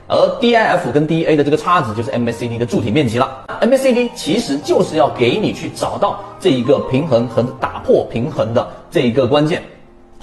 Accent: native